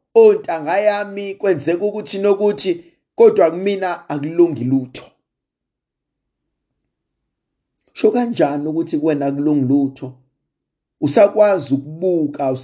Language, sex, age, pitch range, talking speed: English, male, 50-69, 150-235 Hz, 95 wpm